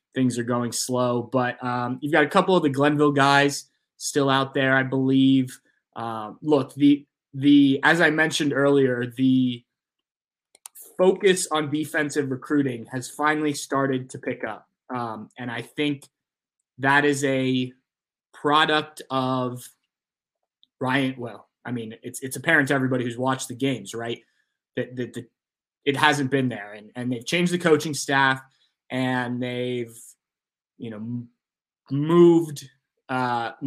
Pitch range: 125-145 Hz